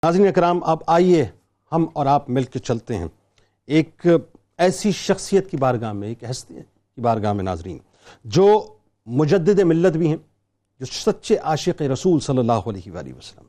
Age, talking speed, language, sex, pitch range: 50-69, 165 wpm, Urdu, male, 155-220 Hz